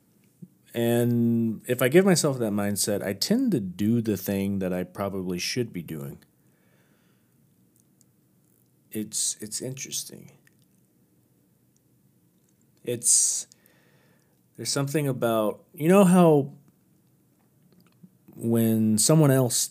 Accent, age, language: American, 30-49, English